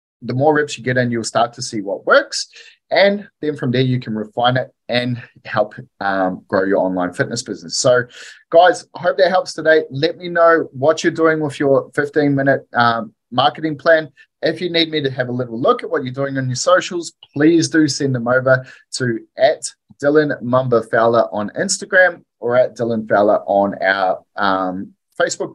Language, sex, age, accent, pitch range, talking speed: English, male, 20-39, Australian, 115-150 Hz, 195 wpm